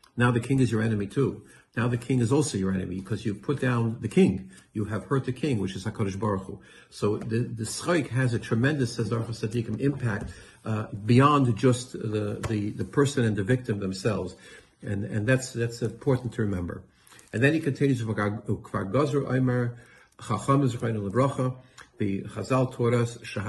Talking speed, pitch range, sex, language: 155 wpm, 105-130 Hz, male, English